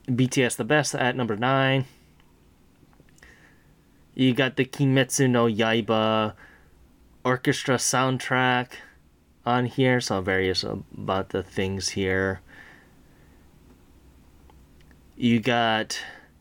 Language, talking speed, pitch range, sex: English, 90 wpm, 100-130 Hz, male